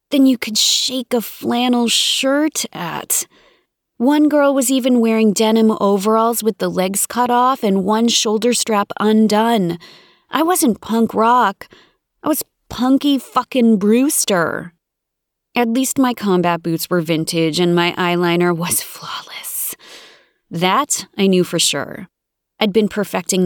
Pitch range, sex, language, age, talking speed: 170-225 Hz, female, English, 30-49, 140 wpm